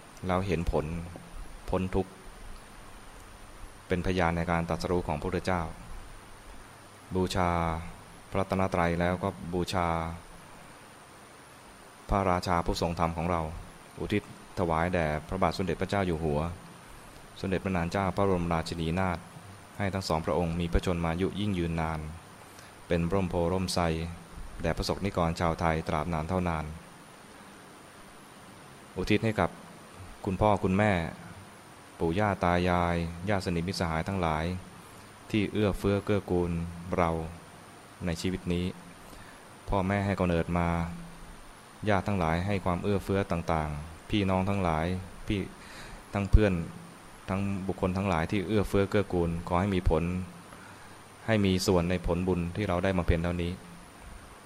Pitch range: 85-100 Hz